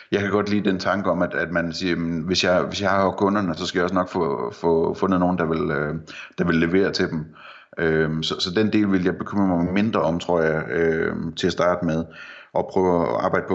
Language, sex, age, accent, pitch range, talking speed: Danish, male, 30-49, native, 80-100 Hz, 220 wpm